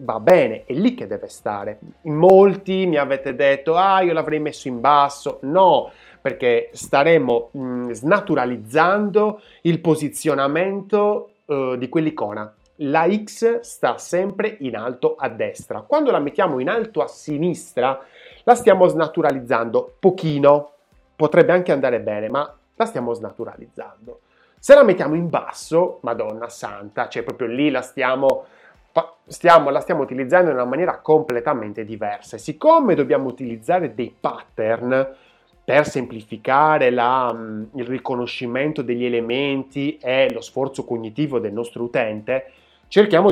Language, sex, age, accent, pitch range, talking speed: Italian, male, 30-49, native, 120-175 Hz, 130 wpm